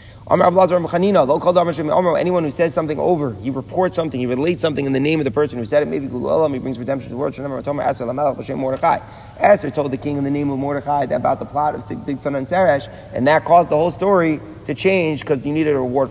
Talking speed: 210 wpm